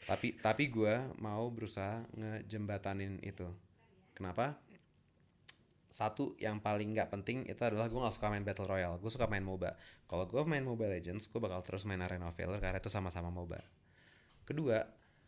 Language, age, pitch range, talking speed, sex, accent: Indonesian, 20-39, 105-135 Hz, 155 wpm, male, native